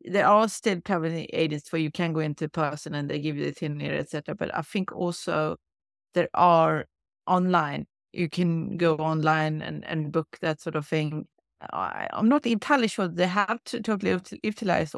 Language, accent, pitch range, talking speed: English, Swedish, 155-180 Hz, 190 wpm